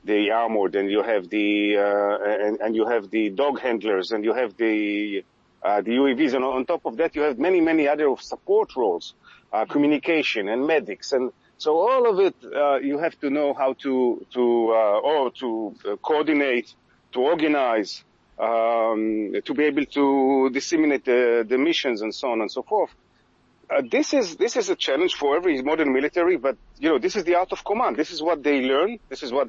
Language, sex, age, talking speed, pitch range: English, male, 40-59, 200 wpm, 115-155 Hz